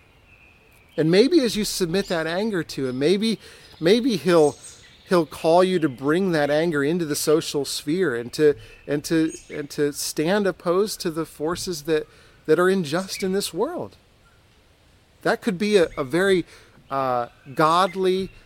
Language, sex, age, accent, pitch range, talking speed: English, male, 40-59, American, 125-170 Hz, 160 wpm